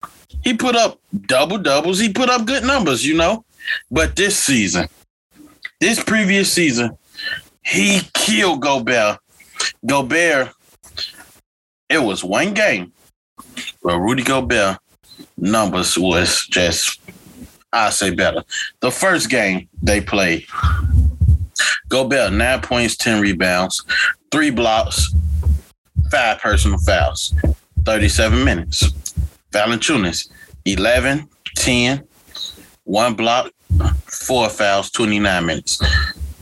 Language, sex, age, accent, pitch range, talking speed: English, male, 20-39, American, 85-125 Hz, 100 wpm